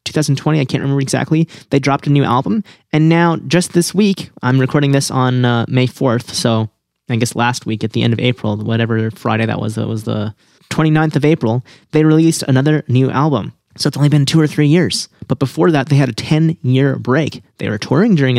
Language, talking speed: English, 220 wpm